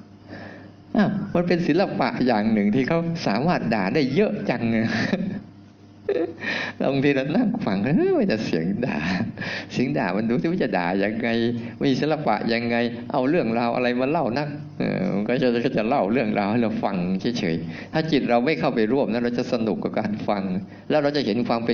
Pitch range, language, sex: 115-160 Hz, Thai, male